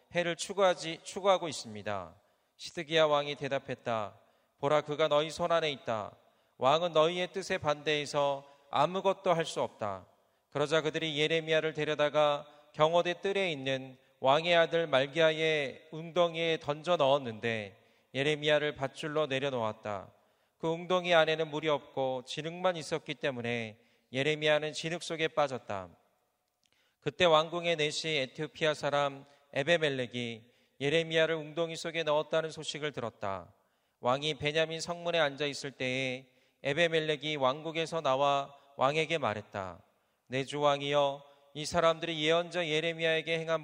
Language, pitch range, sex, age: Korean, 135-165 Hz, male, 40-59